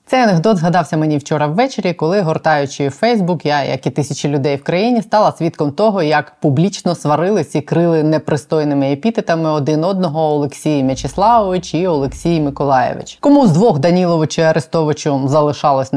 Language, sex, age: Ukrainian, female, 20-39